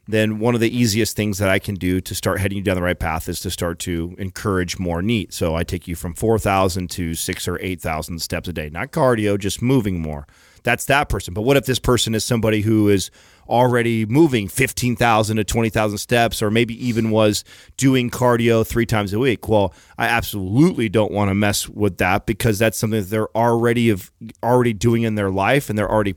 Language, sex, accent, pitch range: English, male, American, 100-120 Hz